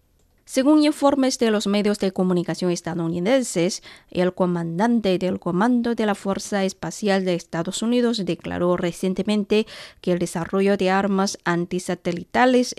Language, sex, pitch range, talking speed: Spanish, female, 175-225 Hz, 125 wpm